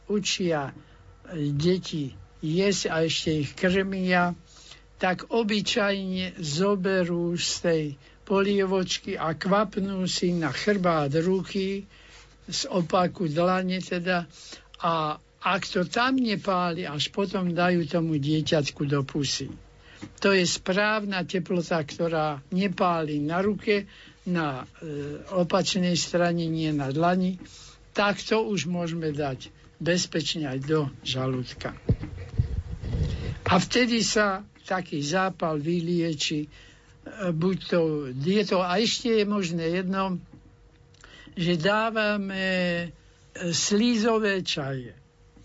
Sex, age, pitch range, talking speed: male, 60-79, 155-195 Hz, 100 wpm